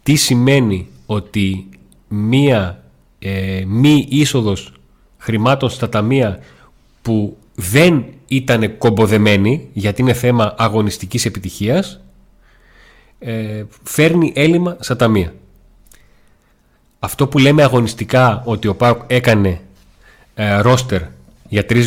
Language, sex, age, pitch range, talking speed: Greek, male, 40-59, 100-130 Hz, 95 wpm